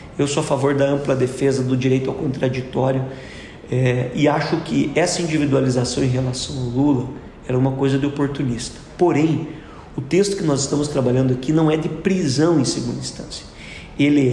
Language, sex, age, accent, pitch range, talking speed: Portuguese, male, 40-59, Brazilian, 130-155 Hz, 170 wpm